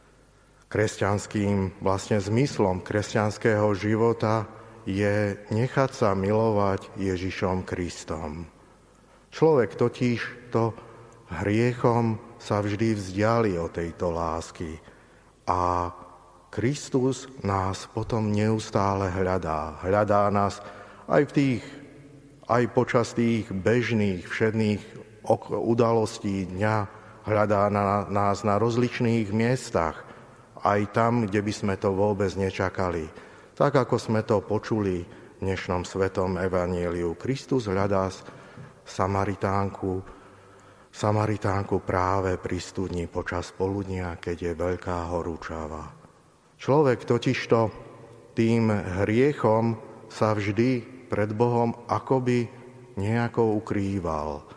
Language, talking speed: Slovak, 95 wpm